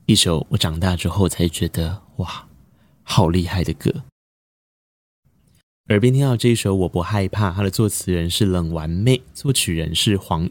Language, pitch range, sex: Chinese, 90-125 Hz, male